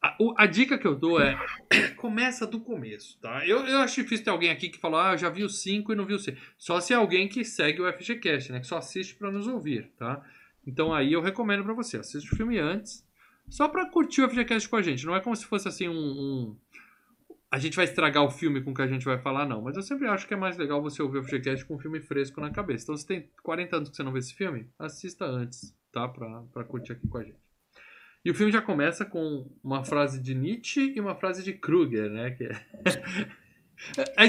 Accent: Brazilian